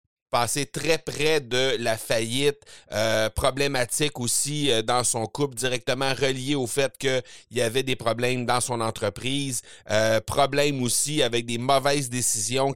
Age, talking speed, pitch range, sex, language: 30-49, 155 wpm, 110-140 Hz, male, French